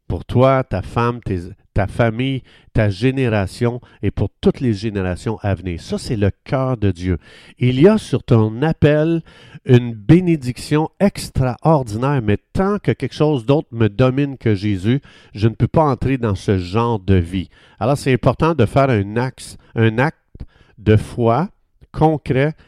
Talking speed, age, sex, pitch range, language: 160 wpm, 50-69, male, 105-135 Hz, French